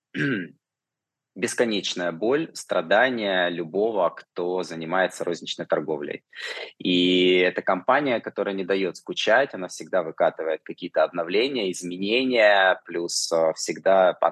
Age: 20-39